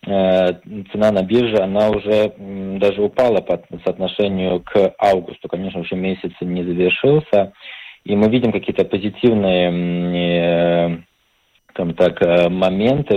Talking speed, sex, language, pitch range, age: 100 wpm, male, Russian, 90-105 Hz, 20-39